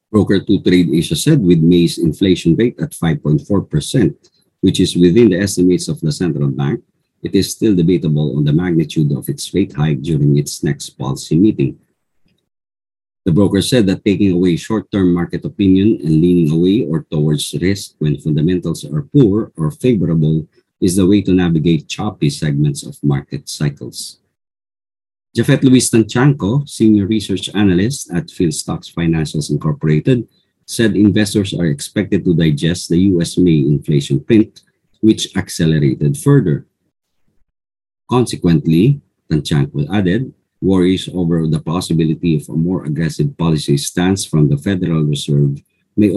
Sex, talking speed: male, 145 wpm